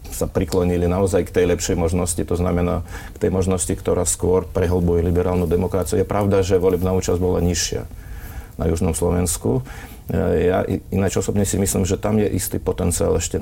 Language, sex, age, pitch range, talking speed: Slovak, male, 40-59, 90-95 Hz, 175 wpm